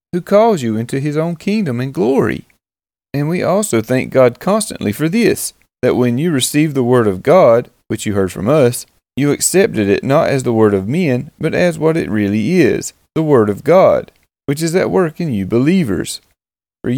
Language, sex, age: English, male, 40-59